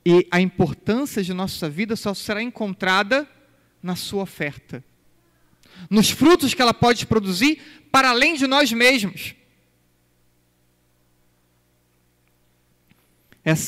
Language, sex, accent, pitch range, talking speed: Portuguese, male, Brazilian, 135-180 Hz, 105 wpm